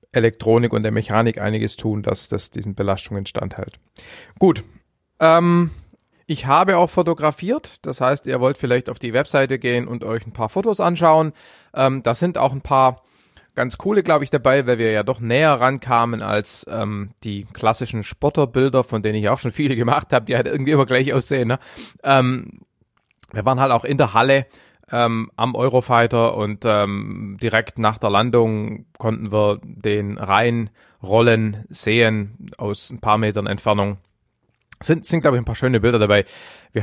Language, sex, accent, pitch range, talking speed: German, male, German, 105-130 Hz, 175 wpm